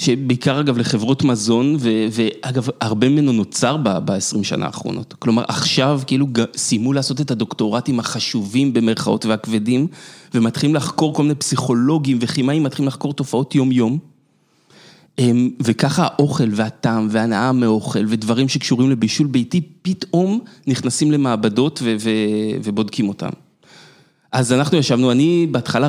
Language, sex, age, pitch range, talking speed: Hebrew, male, 30-49, 115-145 Hz, 115 wpm